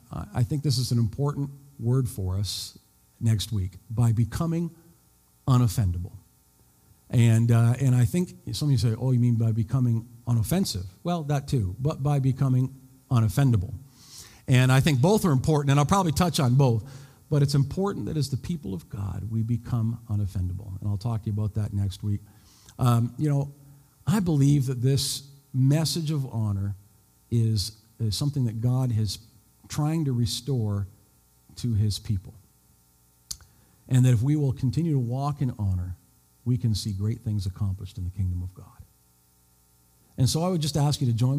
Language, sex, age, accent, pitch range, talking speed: English, male, 50-69, American, 105-140 Hz, 175 wpm